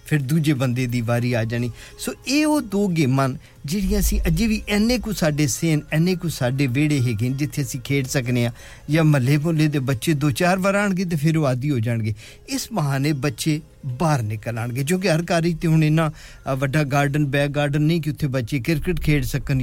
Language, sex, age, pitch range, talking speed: English, male, 50-69, 125-165 Hz, 165 wpm